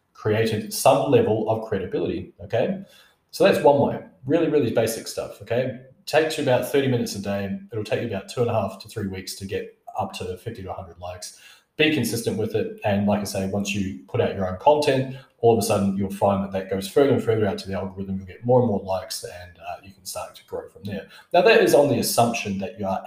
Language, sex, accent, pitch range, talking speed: English, male, Australian, 100-130 Hz, 250 wpm